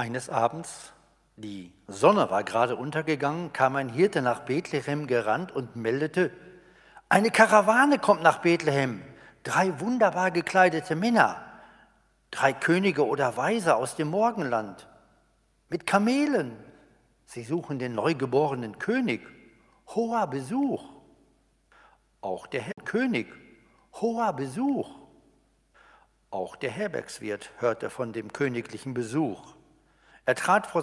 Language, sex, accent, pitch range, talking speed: German, male, German, 120-180 Hz, 110 wpm